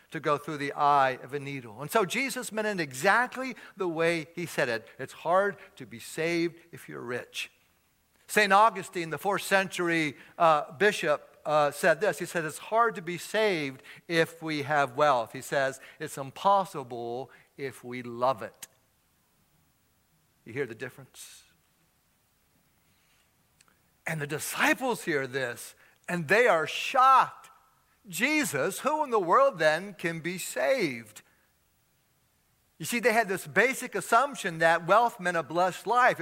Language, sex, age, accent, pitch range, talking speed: English, male, 60-79, American, 155-210 Hz, 150 wpm